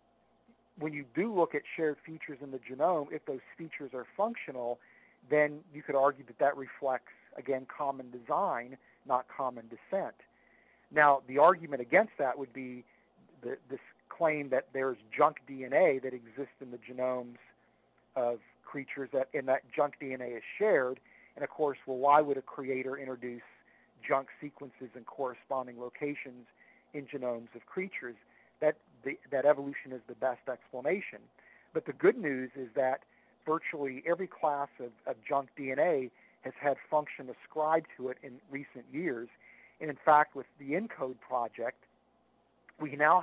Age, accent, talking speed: 50-69, American, 155 wpm